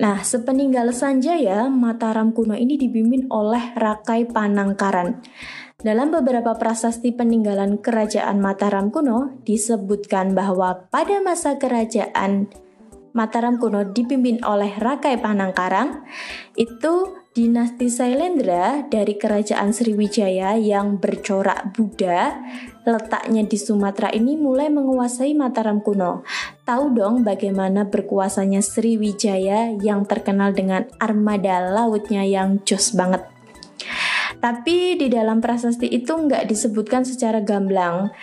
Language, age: Indonesian, 20-39